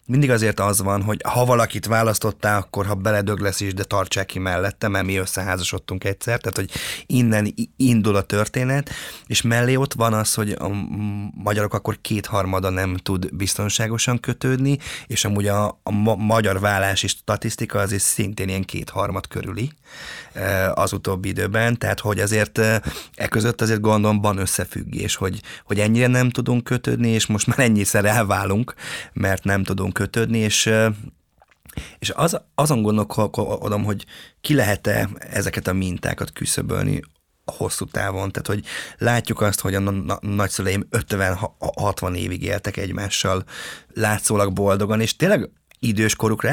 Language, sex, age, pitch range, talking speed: Hungarian, male, 20-39, 100-120 Hz, 140 wpm